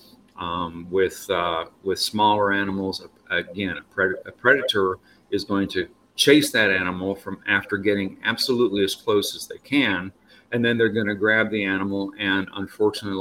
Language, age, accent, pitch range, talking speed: English, 50-69, American, 95-125 Hz, 165 wpm